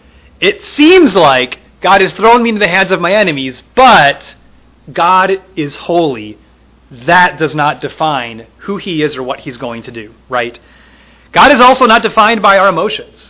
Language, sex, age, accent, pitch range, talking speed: English, male, 30-49, American, 130-190 Hz, 175 wpm